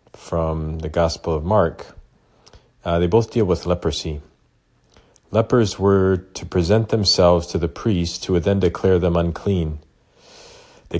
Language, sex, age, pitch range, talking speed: English, male, 40-59, 80-95 Hz, 140 wpm